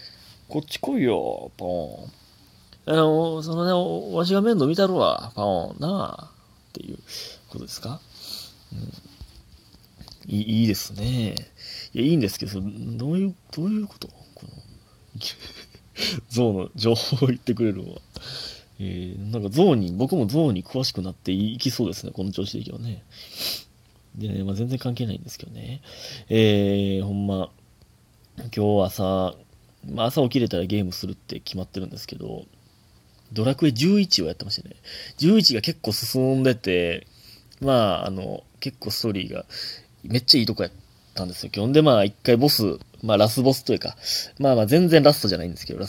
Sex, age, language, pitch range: male, 30-49, Japanese, 100-135 Hz